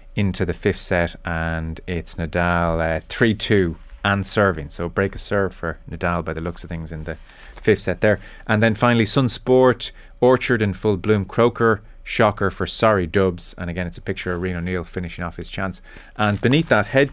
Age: 30-49